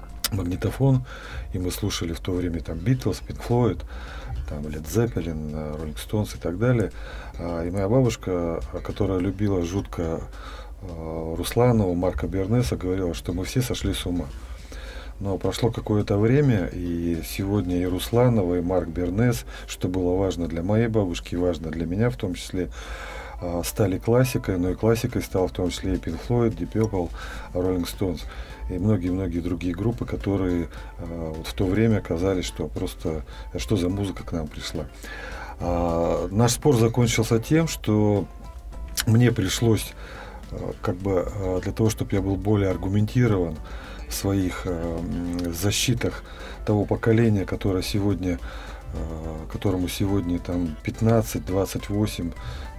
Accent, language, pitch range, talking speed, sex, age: native, Russian, 85-110 Hz, 135 wpm, male, 40-59